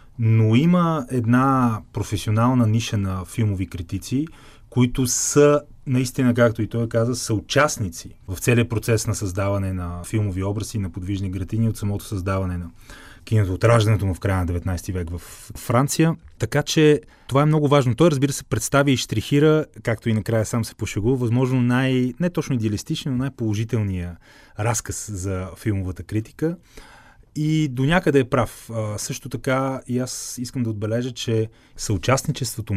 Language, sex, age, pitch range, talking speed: Bulgarian, male, 30-49, 100-130 Hz, 155 wpm